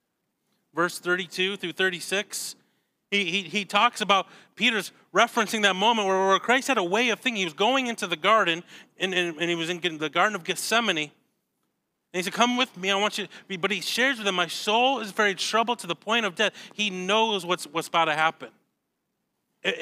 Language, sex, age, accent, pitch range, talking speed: English, male, 30-49, American, 165-220 Hz, 210 wpm